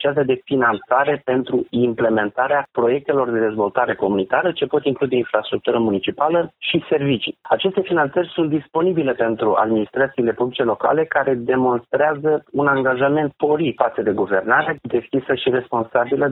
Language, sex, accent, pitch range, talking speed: Romanian, male, native, 120-155 Hz, 125 wpm